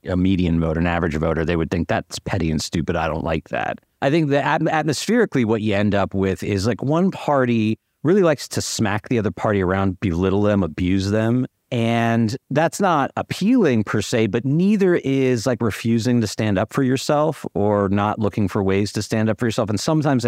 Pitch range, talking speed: 90-120 Hz, 205 wpm